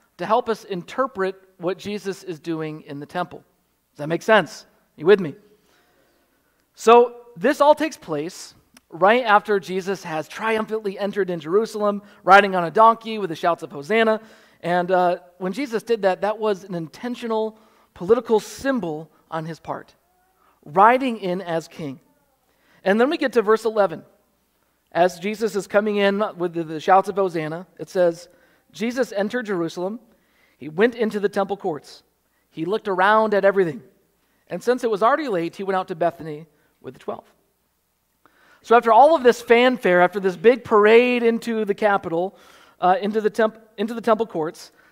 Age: 40-59